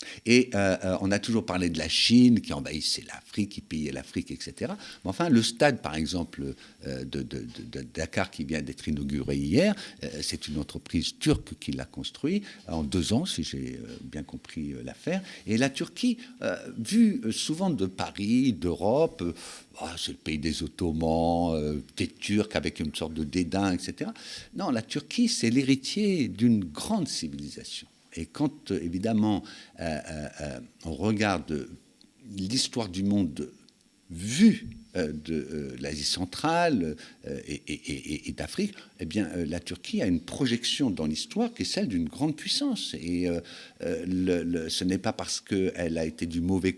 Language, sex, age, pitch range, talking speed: French, male, 60-79, 80-120 Hz, 170 wpm